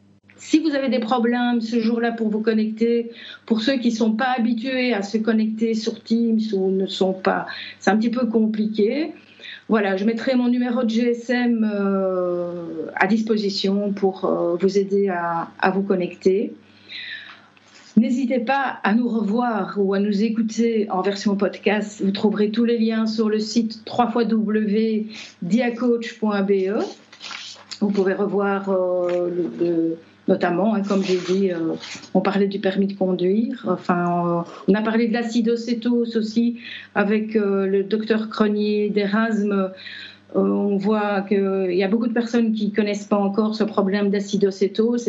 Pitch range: 195-230 Hz